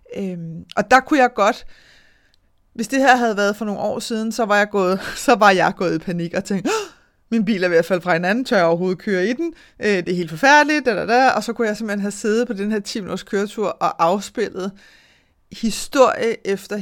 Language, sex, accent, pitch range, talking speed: Danish, female, native, 190-235 Hz, 235 wpm